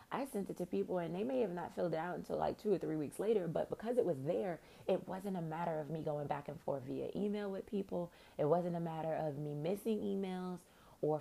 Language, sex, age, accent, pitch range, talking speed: English, female, 30-49, American, 145-185 Hz, 255 wpm